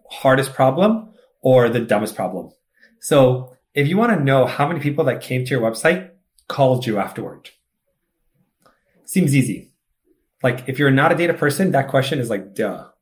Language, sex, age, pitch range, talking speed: English, male, 30-49, 120-150 Hz, 170 wpm